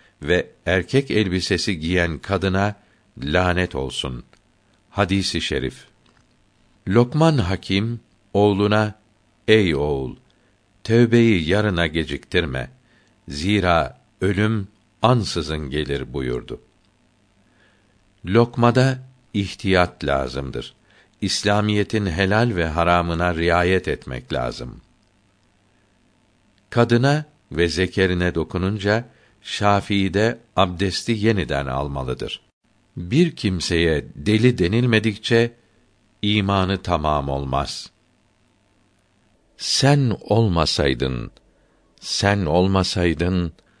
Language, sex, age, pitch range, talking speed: Turkish, male, 60-79, 85-110 Hz, 70 wpm